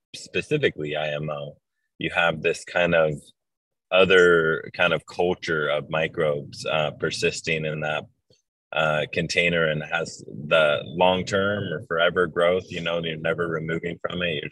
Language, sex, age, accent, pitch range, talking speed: English, male, 20-39, American, 80-90 Hz, 150 wpm